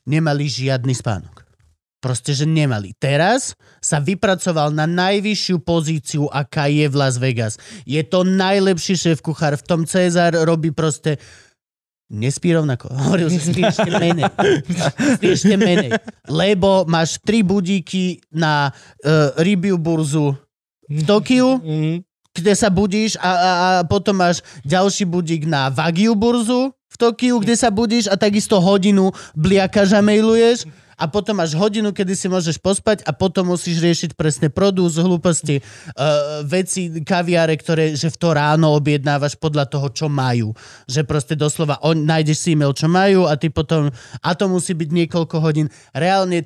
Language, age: Slovak, 30-49